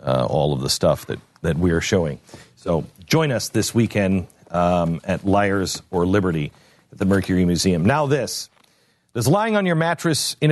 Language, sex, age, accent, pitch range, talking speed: English, male, 50-69, American, 95-130 Hz, 185 wpm